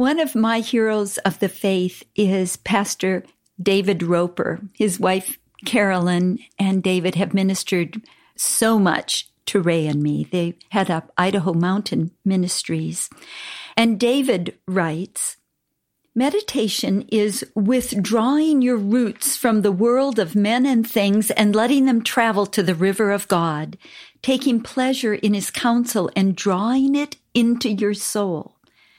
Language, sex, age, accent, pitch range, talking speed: English, female, 50-69, American, 185-240 Hz, 135 wpm